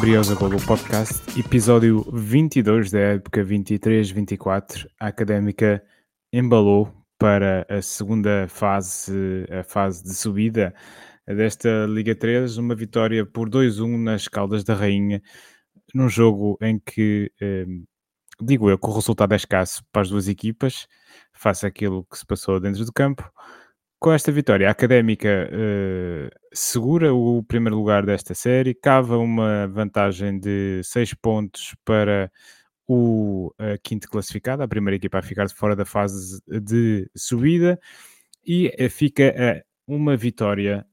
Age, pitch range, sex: 20-39, 100-115 Hz, male